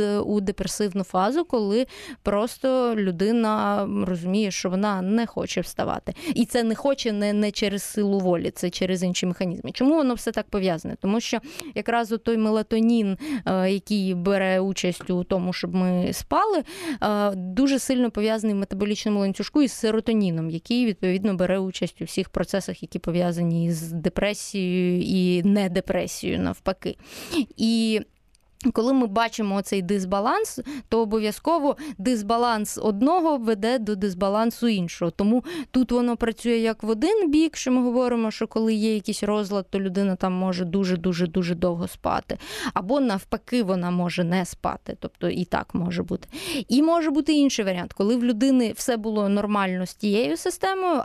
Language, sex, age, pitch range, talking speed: Ukrainian, female, 20-39, 190-245 Hz, 150 wpm